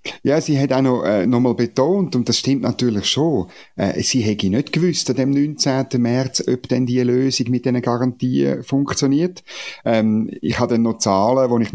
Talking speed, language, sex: 200 wpm, German, male